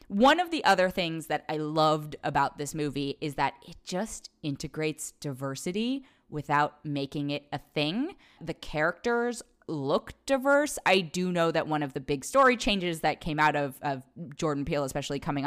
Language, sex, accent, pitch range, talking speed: English, female, American, 150-215 Hz, 175 wpm